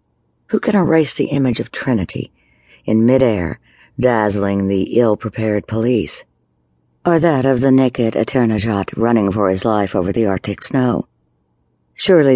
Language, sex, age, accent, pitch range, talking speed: English, female, 60-79, American, 95-125 Hz, 135 wpm